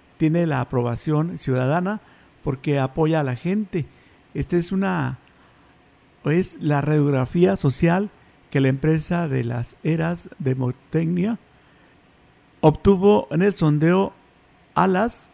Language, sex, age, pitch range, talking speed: Spanish, male, 50-69, 150-195 Hz, 115 wpm